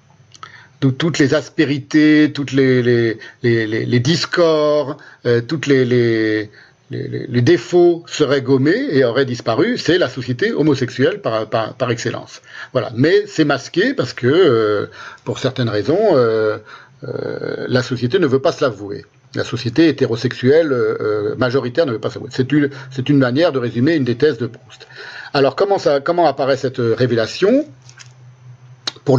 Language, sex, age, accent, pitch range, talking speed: French, male, 50-69, French, 125-155 Hz, 160 wpm